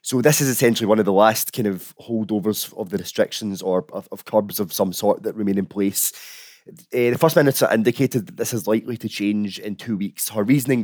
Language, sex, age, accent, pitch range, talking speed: English, male, 20-39, British, 105-130 Hz, 225 wpm